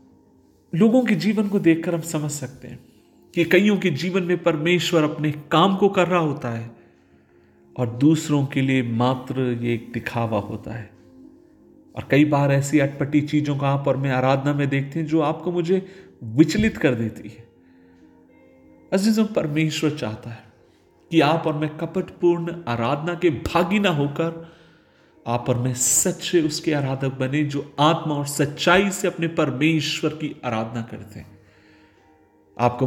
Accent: native